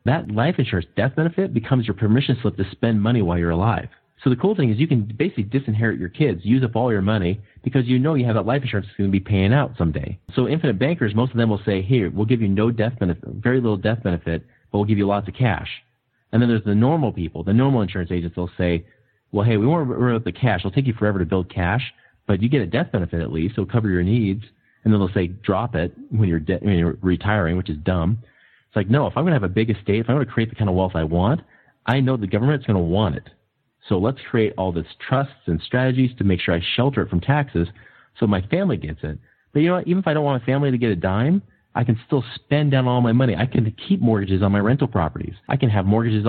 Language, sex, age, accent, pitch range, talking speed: English, male, 30-49, American, 95-125 Hz, 275 wpm